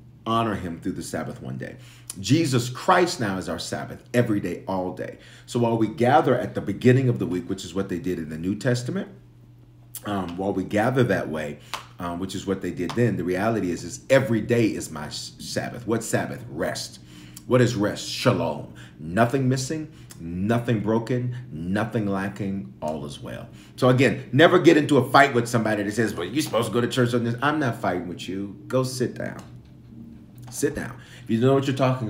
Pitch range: 95-125 Hz